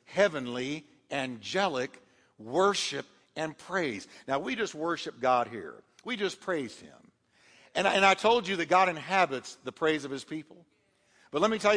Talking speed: 165 wpm